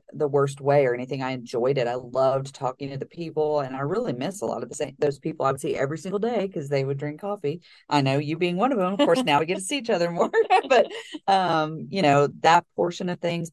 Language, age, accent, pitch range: English, 40-59, American, 130-160 Hz